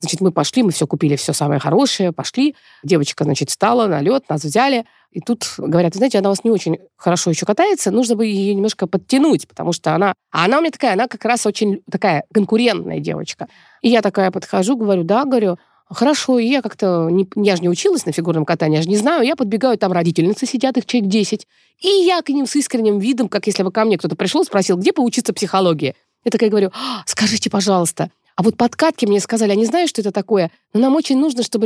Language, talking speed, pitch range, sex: Russian, 225 wpm, 185-245 Hz, female